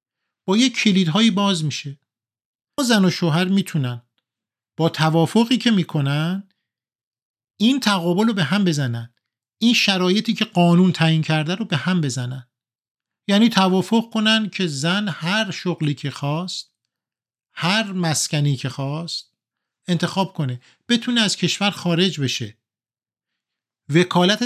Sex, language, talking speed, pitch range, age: male, Persian, 125 wpm, 135-185 Hz, 50-69